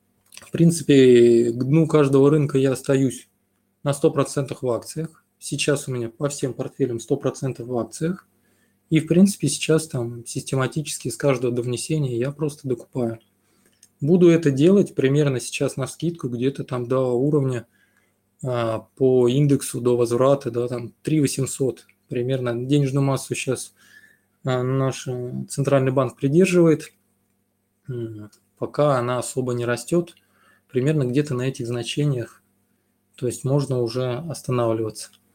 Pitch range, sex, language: 120-145 Hz, male, Russian